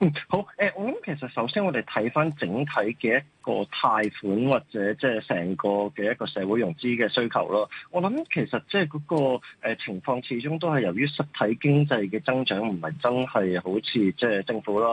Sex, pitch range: male, 105-150 Hz